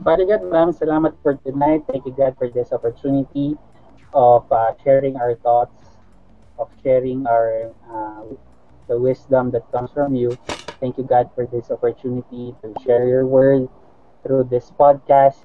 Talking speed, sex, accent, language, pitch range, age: 150 wpm, male, Filipino, English, 115-135 Hz, 20-39